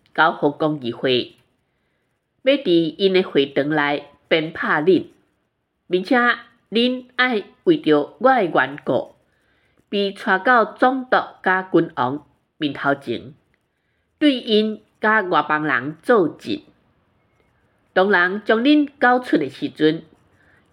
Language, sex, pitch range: Chinese, female, 150-240 Hz